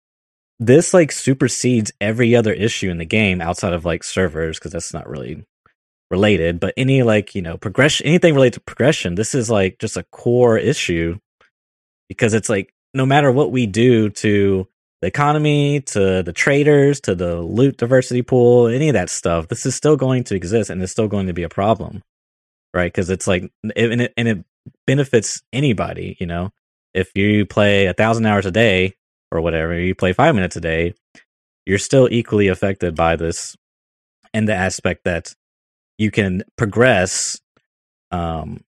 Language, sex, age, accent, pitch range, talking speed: English, male, 20-39, American, 90-115 Hz, 175 wpm